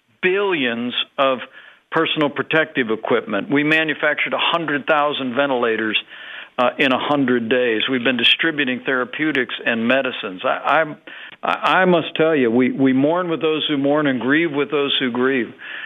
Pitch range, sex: 120-150 Hz, male